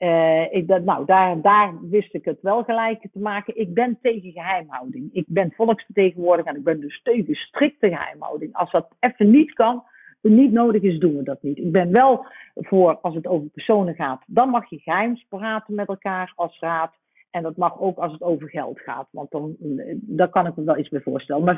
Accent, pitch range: Dutch, 160-210 Hz